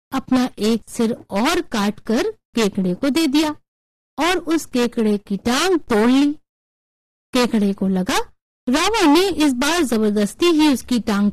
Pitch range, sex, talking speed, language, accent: 215-305 Hz, female, 150 wpm, Hindi, native